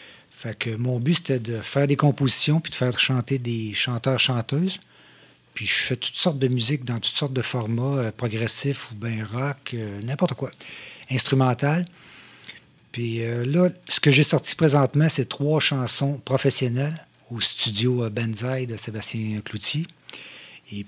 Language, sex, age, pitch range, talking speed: French, male, 60-79, 110-140 Hz, 160 wpm